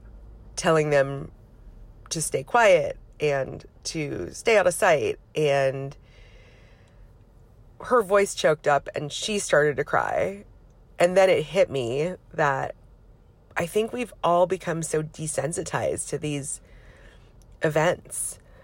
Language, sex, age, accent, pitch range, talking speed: English, female, 30-49, American, 125-180 Hz, 120 wpm